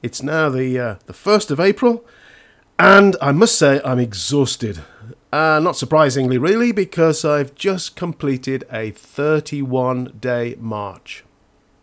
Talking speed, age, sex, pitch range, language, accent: 125 wpm, 50-69, male, 125-180 Hz, English, British